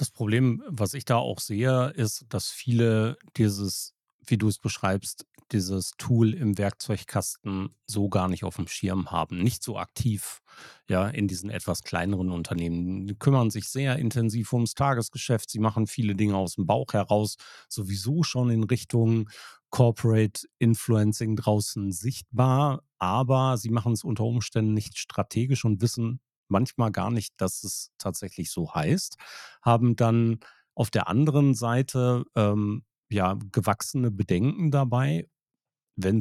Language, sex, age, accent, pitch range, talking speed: German, male, 40-59, German, 95-120 Hz, 145 wpm